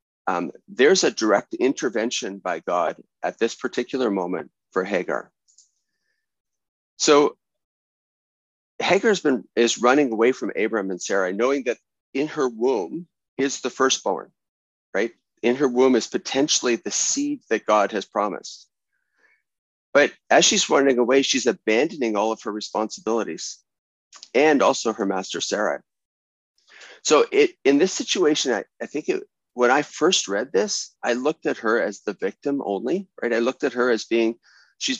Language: English